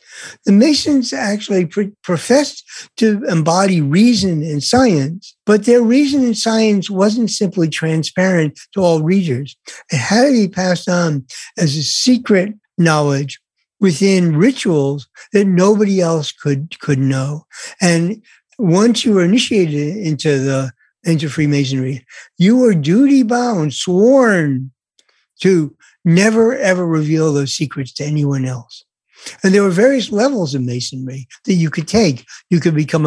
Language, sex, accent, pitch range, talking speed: English, male, American, 150-225 Hz, 135 wpm